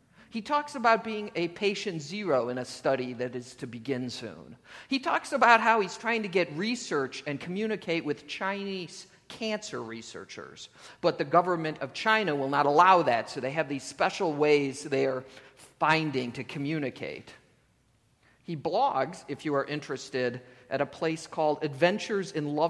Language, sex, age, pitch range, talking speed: English, male, 50-69, 135-180 Hz, 165 wpm